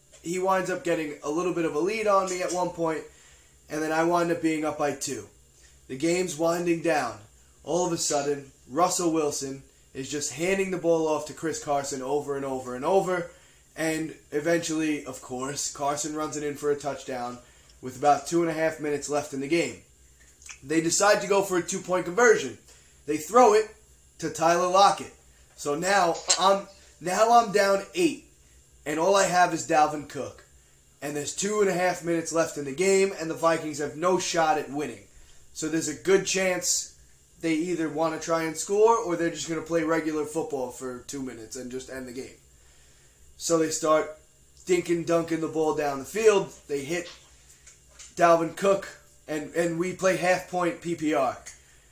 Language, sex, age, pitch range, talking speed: English, male, 20-39, 145-180 Hz, 190 wpm